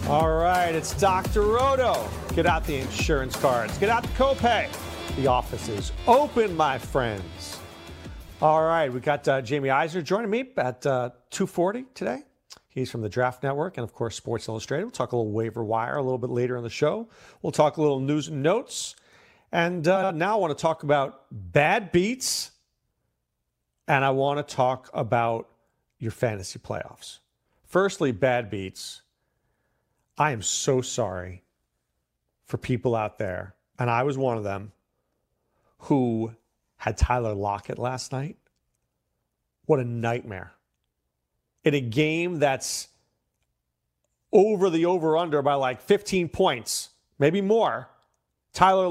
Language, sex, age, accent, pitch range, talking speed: English, male, 40-59, American, 105-170 Hz, 150 wpm